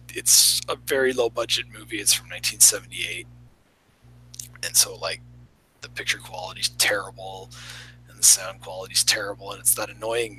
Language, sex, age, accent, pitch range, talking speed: English, male, 30-49, American, 105-125 Hz, 145 wpm